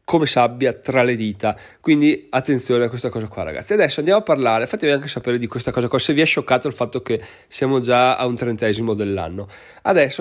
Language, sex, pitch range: Italian, male, 125-150 Hz